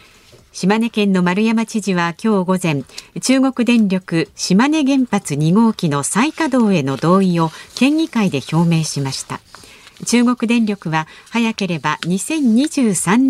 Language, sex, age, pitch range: Japanese, female, 50-69, 160-245 Hz